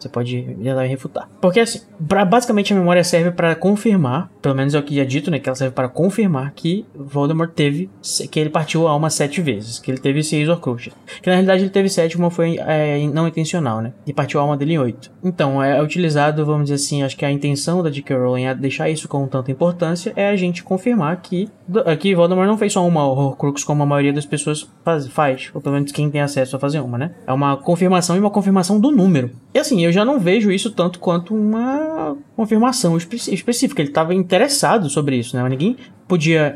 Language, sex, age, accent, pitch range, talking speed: Portuguese, male, 20-39, Brazilian, 145-190 Hz, 230 wpm